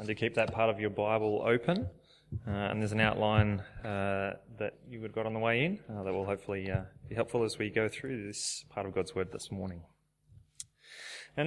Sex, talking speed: male, 225 wpm